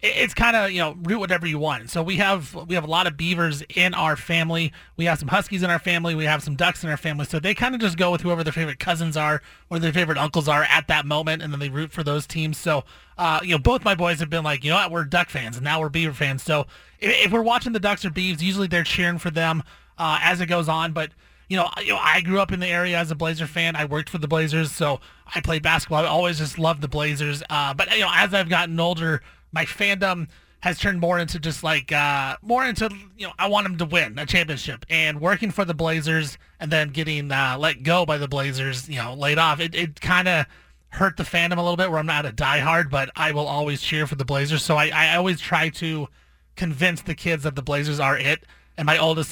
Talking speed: 265 wpm